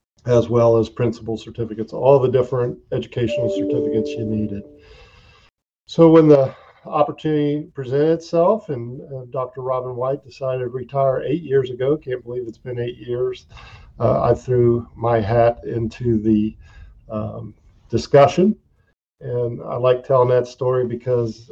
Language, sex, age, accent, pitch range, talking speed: English, male, 50-69, American, 115-135 Hz, 140 wpm